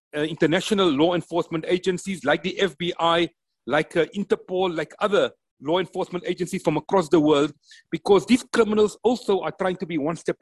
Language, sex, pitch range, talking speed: English, male, 160-200 Hz, 175 wpm